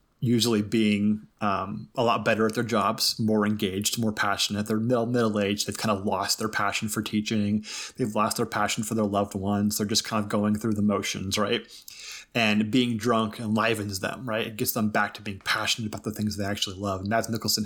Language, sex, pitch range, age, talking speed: English, male, 105-115 Hz, 30-49, 205 wpm